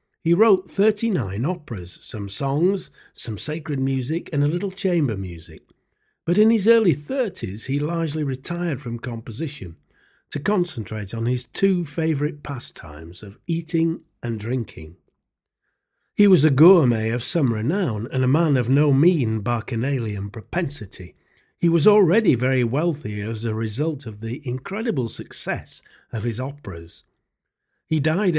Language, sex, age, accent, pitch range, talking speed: English, male, 50-69, British, 115-165 Hz, 140 wpm